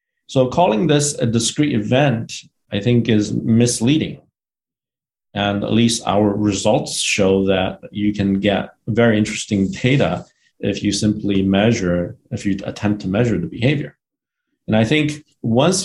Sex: male